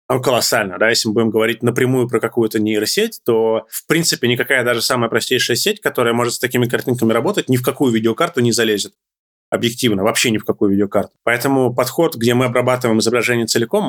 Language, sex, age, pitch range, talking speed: Russian, male, 20-39, 115-130 Hz, 185 wpm